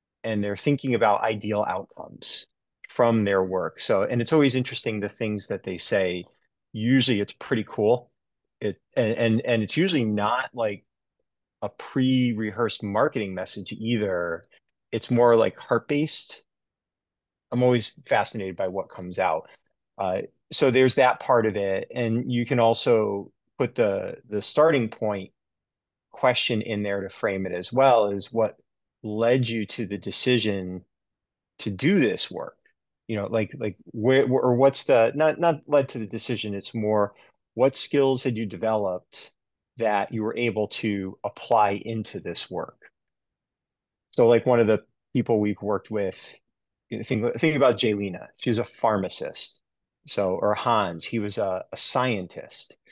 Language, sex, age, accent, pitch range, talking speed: English, male, 30-49, American, 105-125 Hz, 160 wpm